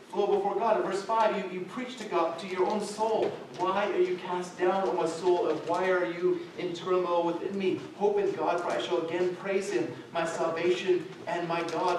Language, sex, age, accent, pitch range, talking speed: English, male, 30-49, American, 170-205 Hz, 225 wpm